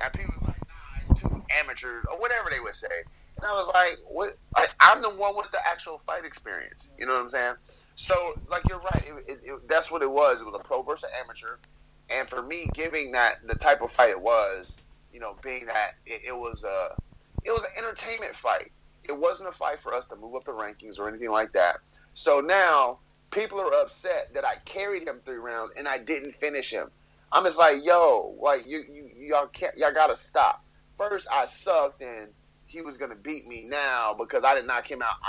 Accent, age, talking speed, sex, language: American, 30-49, 220 wpm, male, English